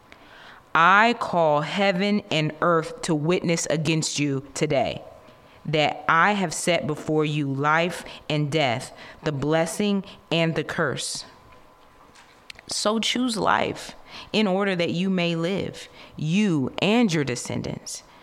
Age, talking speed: 30-49, 120 wpm